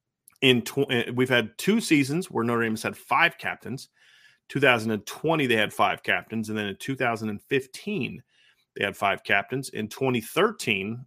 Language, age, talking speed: English, 30-49, 145 wpm